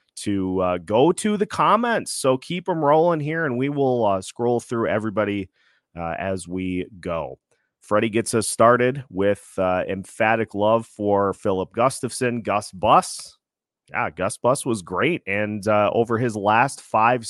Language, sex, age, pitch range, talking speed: English, male, 30-49, 100-125 Hz, 160 wpm